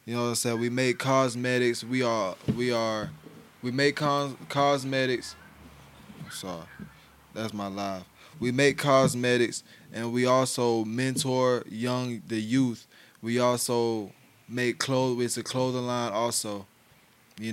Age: 20-39